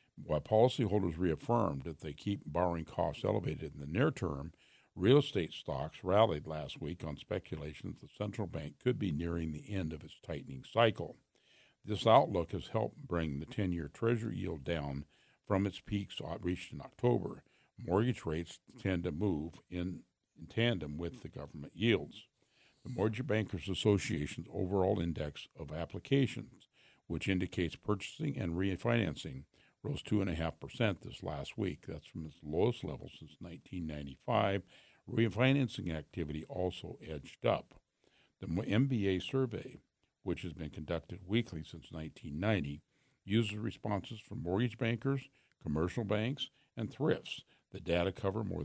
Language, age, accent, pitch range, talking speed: English, 60-79, American, 80-110 Hz, 140 wpm